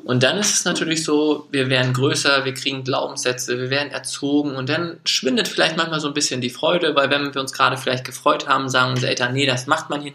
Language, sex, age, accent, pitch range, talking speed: German, male, 20-39, German, 125-145 Hz, 240 wpm